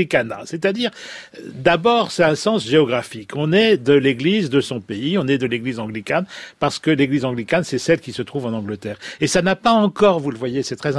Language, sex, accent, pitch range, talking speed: French, male, French, 130-175 Hz, 215 wpm